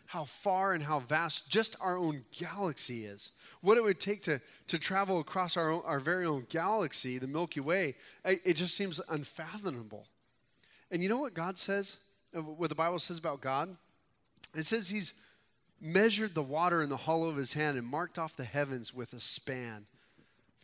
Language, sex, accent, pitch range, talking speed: English, male, American, 130-180 Hz, 190 wpm